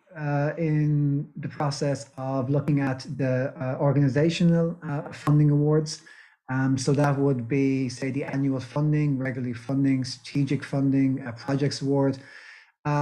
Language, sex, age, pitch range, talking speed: English, male, 30-49, 135-160 Hz, 140 wpm